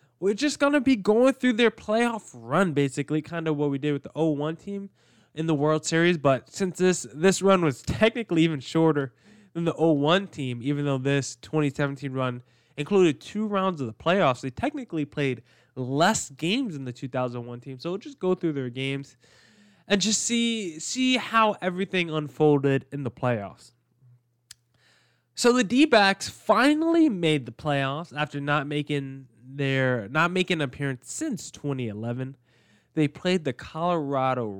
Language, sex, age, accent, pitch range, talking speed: English, male, 10-29, American, 130-185 Hz, 165 wpm